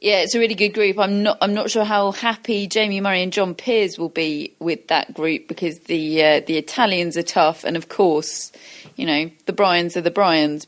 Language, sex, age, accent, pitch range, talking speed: English, female, 30-49, British, 170-215 Hz, 225 wpm